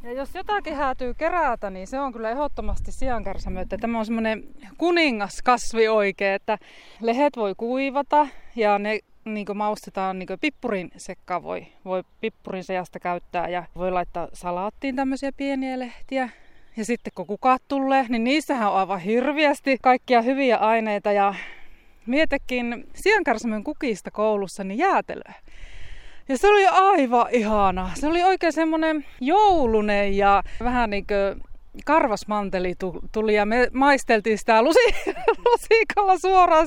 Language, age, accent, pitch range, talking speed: Finnish, 20-39, native, 200-285 Hz, 130 wpm